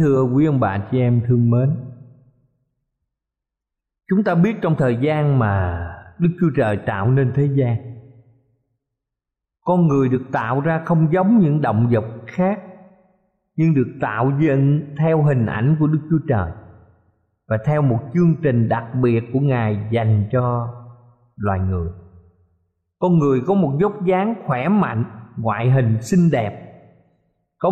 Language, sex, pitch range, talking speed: Vietnamese, male, 115-170 Hz, 150 wpm